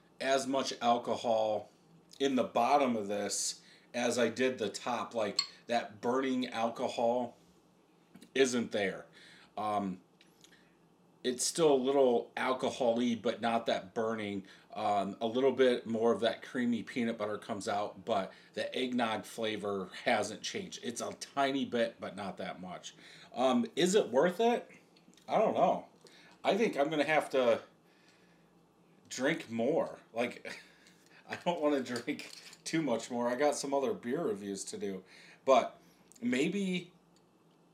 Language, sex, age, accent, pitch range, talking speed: English, male, 40-59, American, 110-140 Hz, 145 wpm